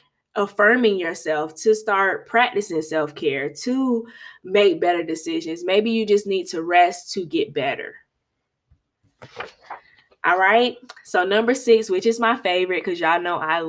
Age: 20-39